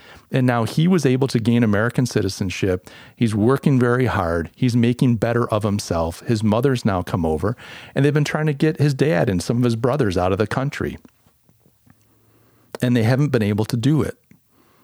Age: 40-59